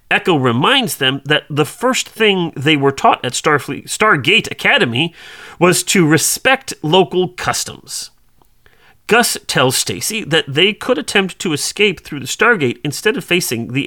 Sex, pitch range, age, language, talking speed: male, 145-205 Hz, 40-59, English, 145 wpm